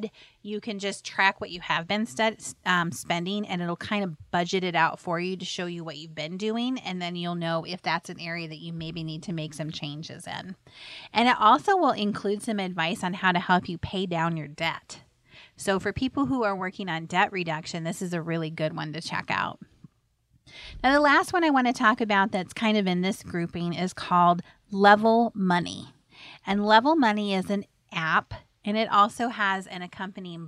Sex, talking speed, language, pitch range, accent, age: female, 215 wpm, English, 170-210 Hz, American, 30-49